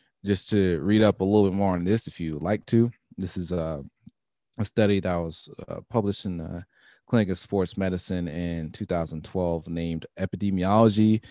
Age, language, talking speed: 30-49, English, 175 wpm